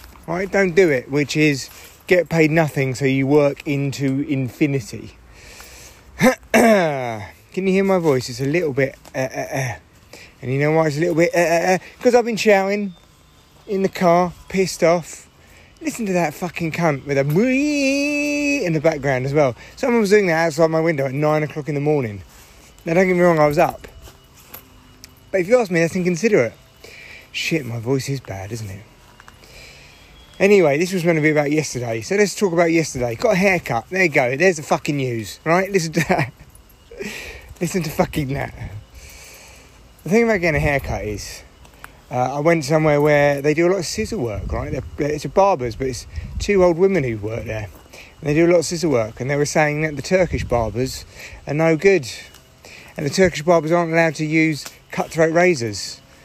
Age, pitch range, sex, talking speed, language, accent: 30-49, 125-175 Hz, male, 195 wpm, English, British